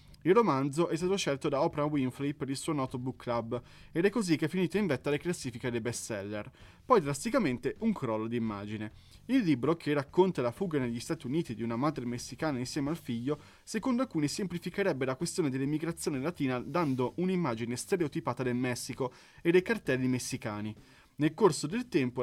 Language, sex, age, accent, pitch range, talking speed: Italian, male, 20-39, native, 120-175 Hz, 185 wpm